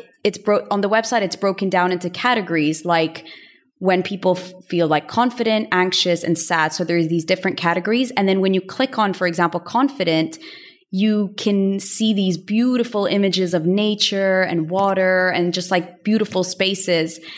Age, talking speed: 20-39, 160 wpm